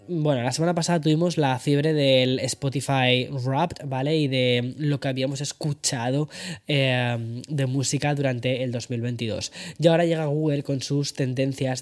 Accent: Spanish